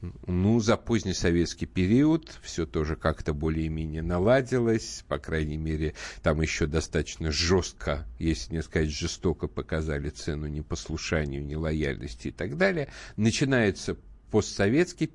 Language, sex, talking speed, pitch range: Russian, male, 120 wpm, 80-110 Hz